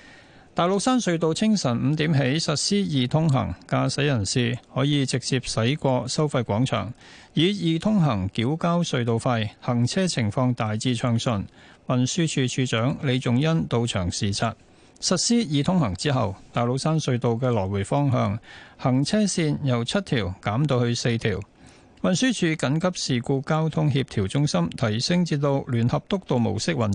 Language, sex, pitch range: Chinese, male, 115-155 Hz